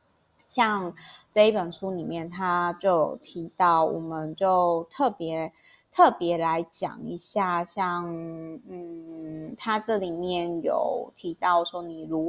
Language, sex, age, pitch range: Chinese, female, 20-39, 170-200 Hz